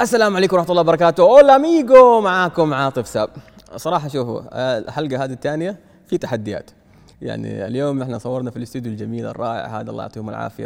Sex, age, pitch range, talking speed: male, 20-39, 110-140 Hz, 165 wpm